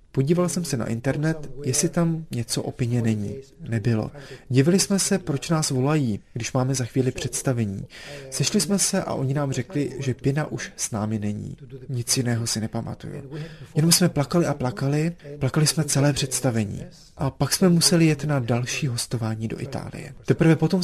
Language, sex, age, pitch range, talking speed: Czech, male, 30-49, 125-155 Hz, 175 wpm